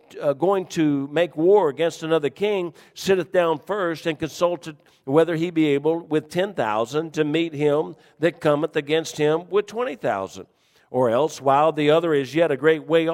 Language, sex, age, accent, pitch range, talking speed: English, male, 50-69, American, 125-165 Hz, 175 wpm